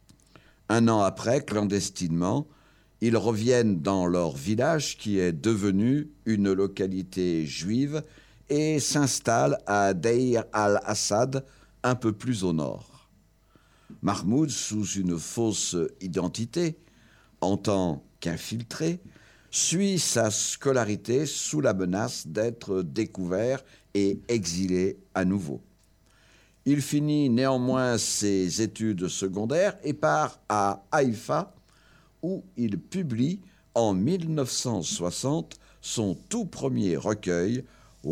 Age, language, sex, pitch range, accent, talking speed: 60-79, French, male, 100-145 Hz, French, 100 wpm